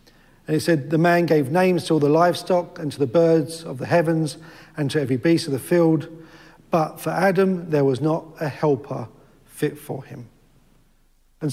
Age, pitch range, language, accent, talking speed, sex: 50-69, 135-165 Hz, English, British, 195 wpm, male